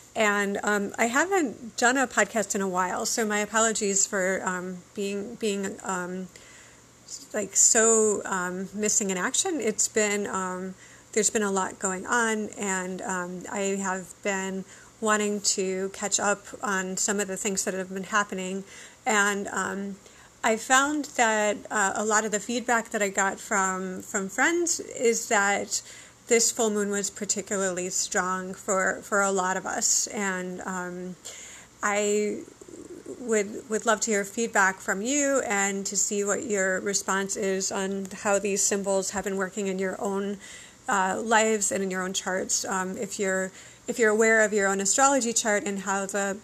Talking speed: 170 wpm